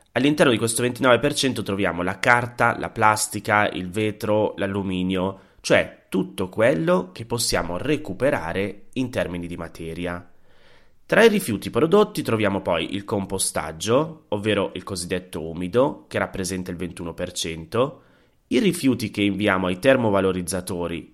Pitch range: 90-120 Hz